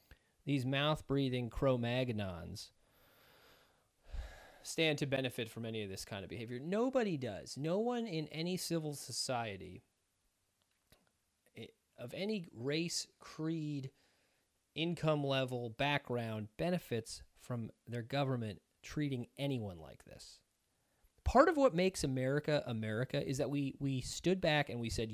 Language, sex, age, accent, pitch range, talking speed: English, male, 30-49, American, 110-155 Hz, 120 wpm